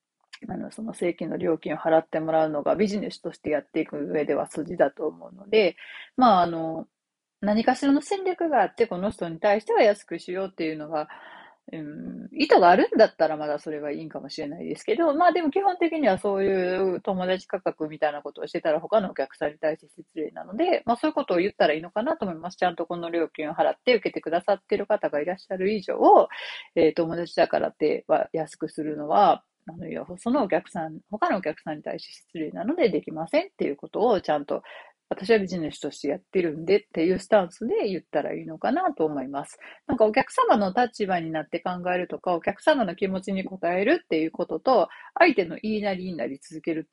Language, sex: Japanese, female